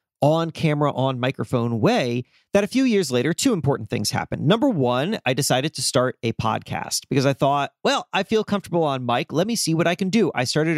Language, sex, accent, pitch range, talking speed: English, male, American, 125-185 Hz, 210 wpm